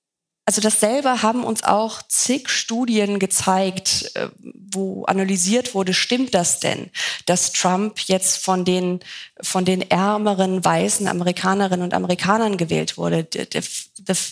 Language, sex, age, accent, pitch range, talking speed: German, female, 20-39, German, 185-215 Hz, 125 wpm